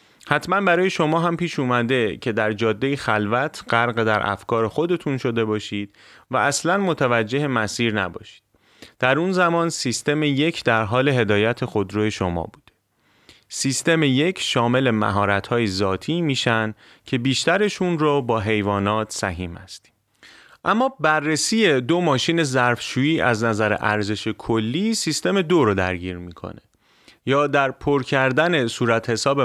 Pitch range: 110-150 Hz